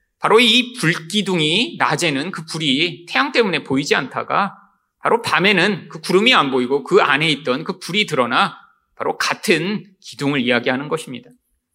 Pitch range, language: 150-245 Hz, Korean